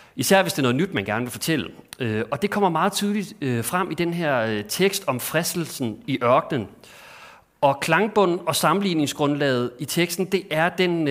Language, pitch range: Danish, 125-175 Hz